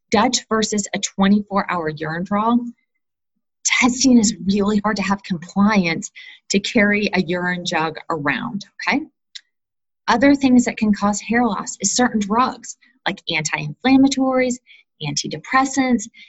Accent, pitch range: American, 185-245 Hz